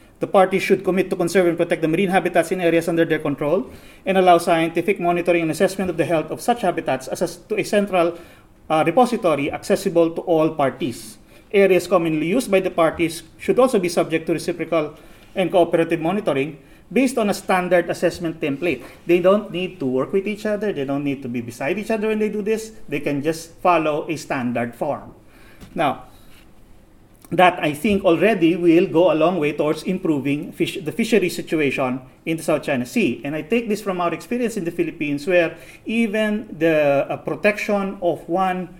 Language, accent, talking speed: English, Filipino, 190 wpm